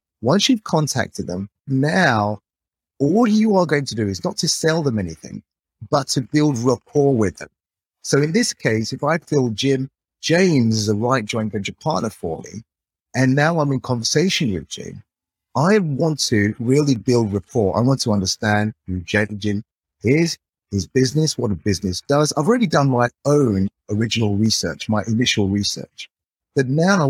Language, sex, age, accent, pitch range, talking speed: English, male, 30-49, British, 105-145 Hz, 175 wpm